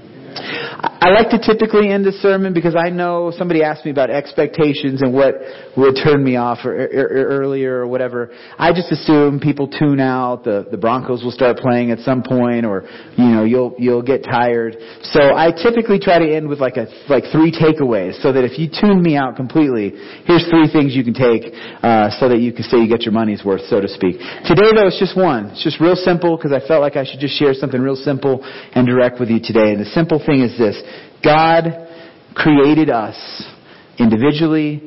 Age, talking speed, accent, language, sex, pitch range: 30-49, 215 wpm, American, English, male, 125-170 Hz